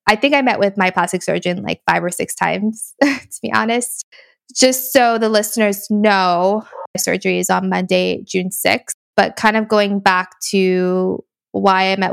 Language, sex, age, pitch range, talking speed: English, female, 20-39, 185-220 Hz, 185 wpm